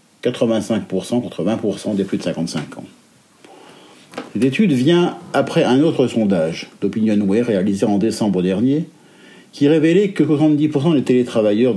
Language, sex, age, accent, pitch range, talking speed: French, male, 50-69, French, 115-170 Hz, 140 wpm